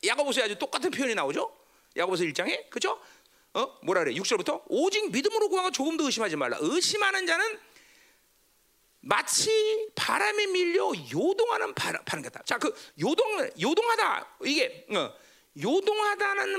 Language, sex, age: Korean, male, 40-59